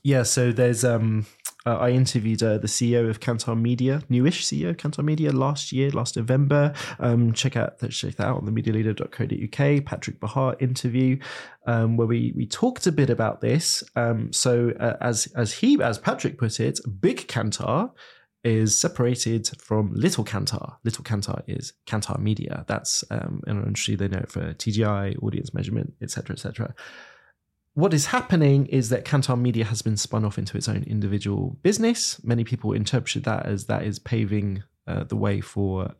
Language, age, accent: English, 20-39, British